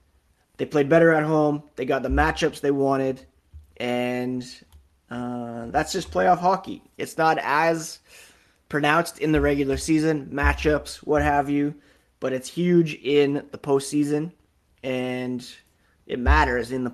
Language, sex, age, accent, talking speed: English, male, 20-39, American, 140 wpm